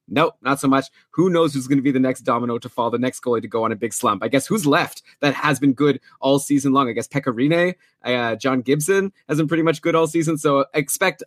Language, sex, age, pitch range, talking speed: English, male, 20-39, 135-175 Hz, 270 wpm